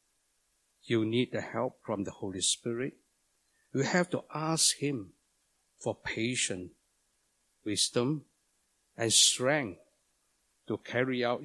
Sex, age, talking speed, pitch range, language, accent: male, 60-79, 110 wpm, 115-155 Hz, English, Malaysian